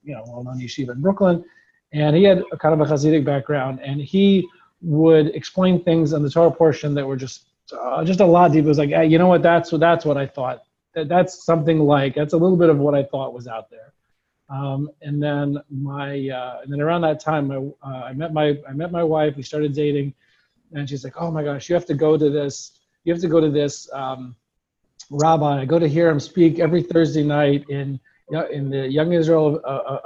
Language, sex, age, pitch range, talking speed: English, male, 40-59, 140-165 Hz, 235 wpm